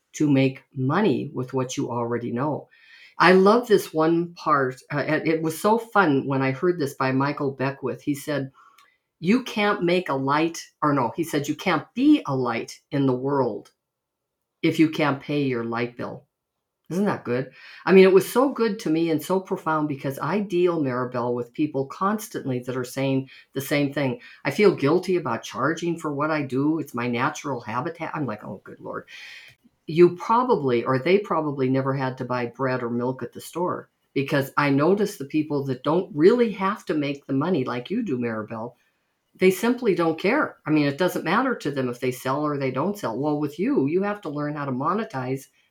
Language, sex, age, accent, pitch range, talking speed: English, female, 50-69, American, 130-170 Hz, 205 wpm